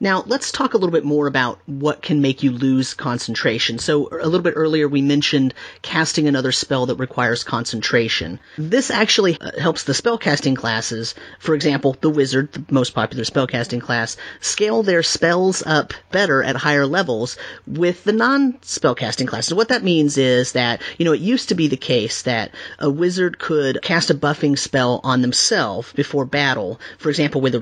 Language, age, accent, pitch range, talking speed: English, 30-49, American, 125-165 Hz, 180 wpm